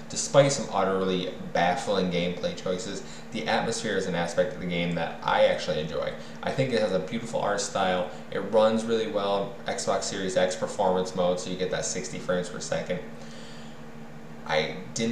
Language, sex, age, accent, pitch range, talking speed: English, male, 20-39, American, 85-120 Hz, 180 wpm